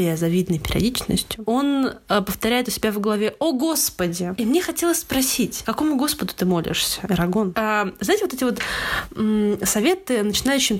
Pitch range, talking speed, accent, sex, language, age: 185-230 Hz, 165 wpm, native, female, Russian, 20-39